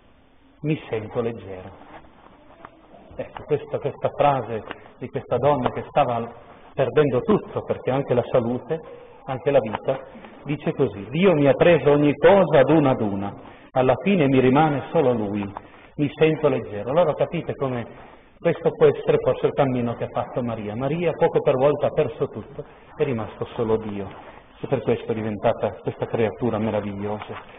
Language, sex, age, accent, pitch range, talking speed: Italian, male, 40-59, native, 120-160 Hz, 160 wpm